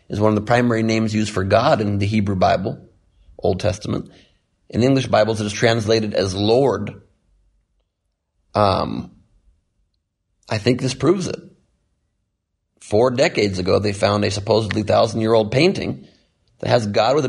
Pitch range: 100-130 Hz